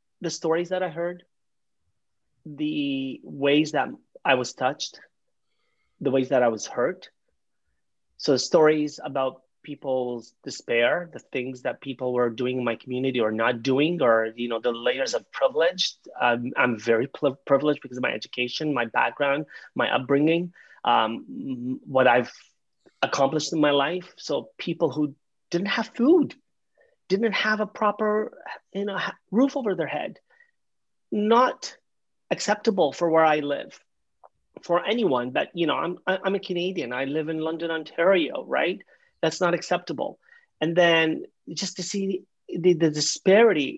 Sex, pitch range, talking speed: male, 135-185 Hz, 150 wpm